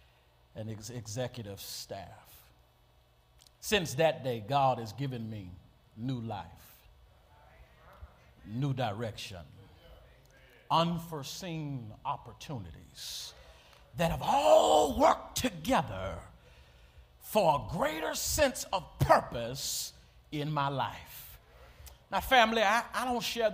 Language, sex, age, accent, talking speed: English, male, 50-69, American, 90 wpm